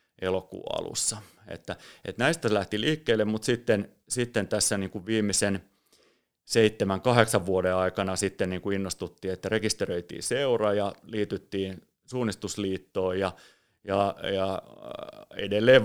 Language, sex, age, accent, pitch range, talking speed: Finnish, male, 30-49, native, 95-115 Hz, 120 wpm